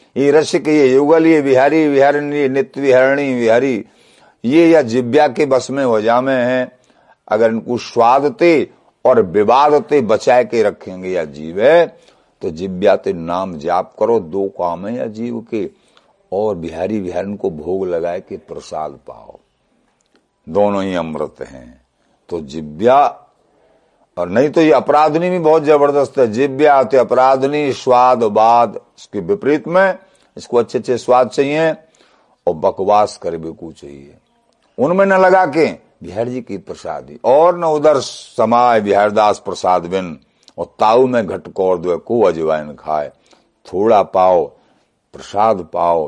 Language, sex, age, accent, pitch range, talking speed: Hindi, male, 60-79, native, 95-145 Hz, 140 wpm